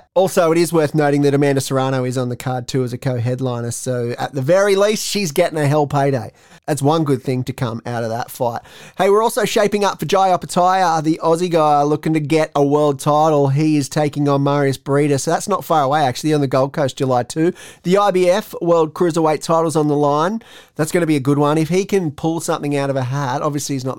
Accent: Australian